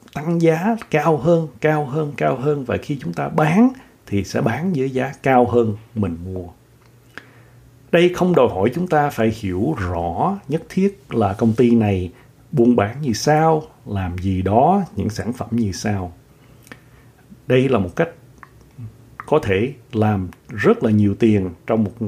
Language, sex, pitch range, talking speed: Vietnamese, male, 100-135 Hz, 170 wpm